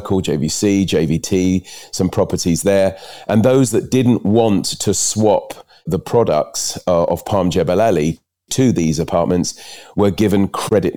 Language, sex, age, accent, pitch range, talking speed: English, male, 40-59, British, 90-110 Hz, 135 wpm